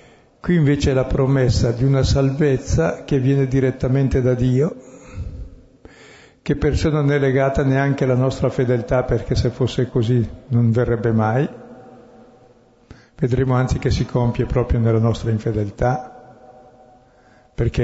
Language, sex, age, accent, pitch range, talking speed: Italian, male, 60-79, native, 120-140 Hz, 130 wpm